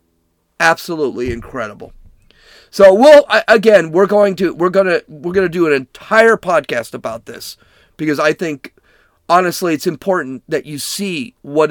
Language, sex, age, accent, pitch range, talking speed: English, male, 40-59, American, 140-210 Hz, 155 wpm